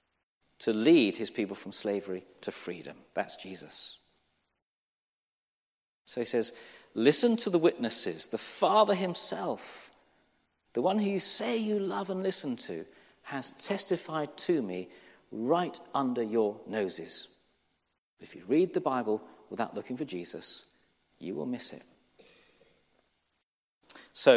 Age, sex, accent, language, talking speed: 40-59, male, British, English, 130 wpm